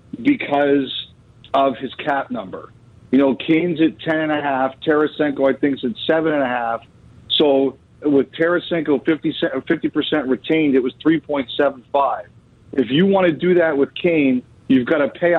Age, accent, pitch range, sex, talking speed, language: 40-59, American, 130-160 Hz, male, 140 wpm, English